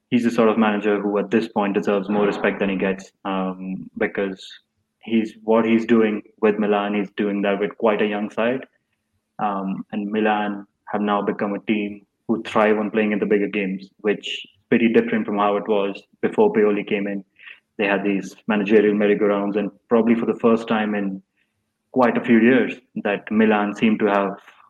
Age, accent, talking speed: 20-39, Indian, 190 wpm